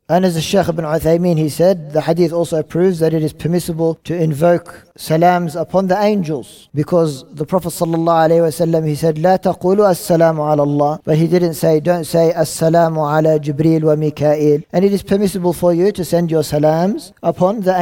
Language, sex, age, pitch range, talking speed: English, male, 40-59, 145-170 Hz, 190 wpm